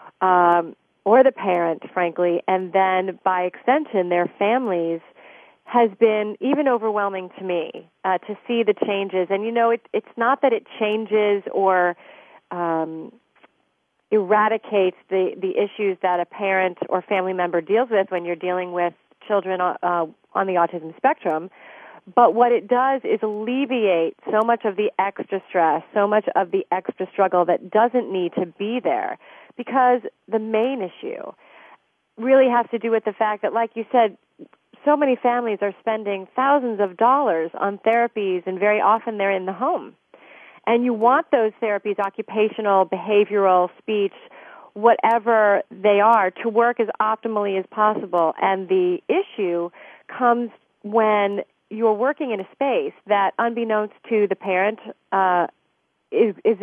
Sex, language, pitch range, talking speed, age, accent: female, English, 185-235 Hz, 155 wpm, 30-49, American